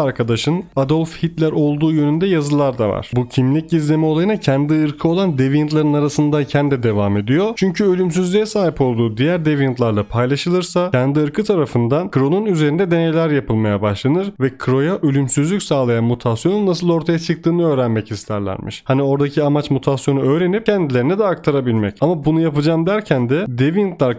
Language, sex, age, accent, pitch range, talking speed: Turkish, male, 30-49, native, 125-165 Hz, 145 wpm